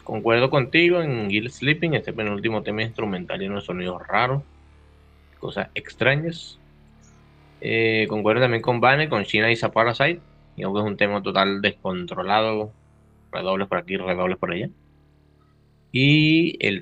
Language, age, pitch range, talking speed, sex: Spanish, 20-39, 90-125 Hz, 145 wpm, male